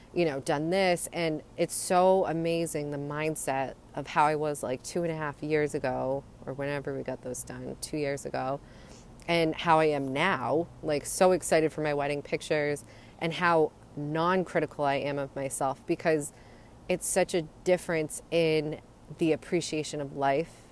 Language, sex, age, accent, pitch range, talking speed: English, female, 30-49, American, 140-170 Hz, 170 wpm